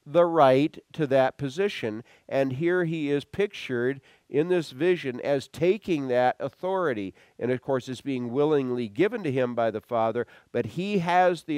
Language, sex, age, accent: English, male, 50-69, American